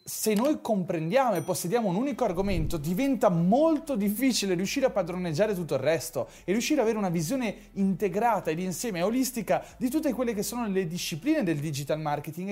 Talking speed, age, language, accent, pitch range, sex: 175 wpm, 30-49, Italian, native, 145-215 Hz, male